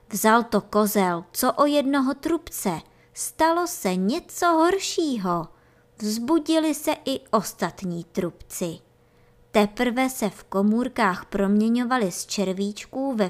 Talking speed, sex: 110 wpm, male